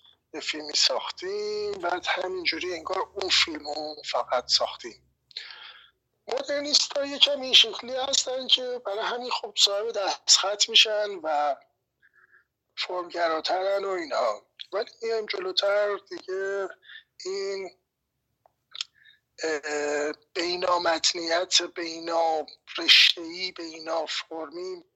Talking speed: 90 wpm